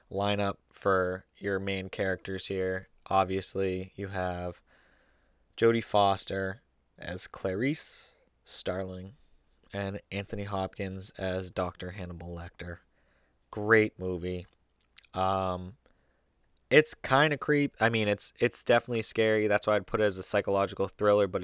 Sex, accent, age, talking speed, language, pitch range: male, American, 20-39, 125 wpm, English, 95-110 Hz